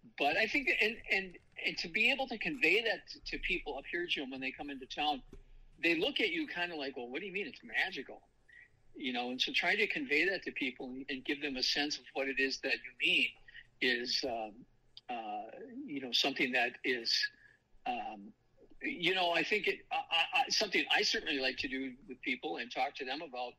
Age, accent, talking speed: 50-69, American, 225 wpm